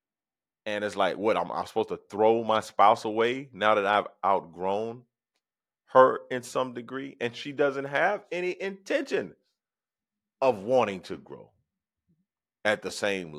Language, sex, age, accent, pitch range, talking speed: English, male, 40-59, American, 90-115 Hz, 150 wpm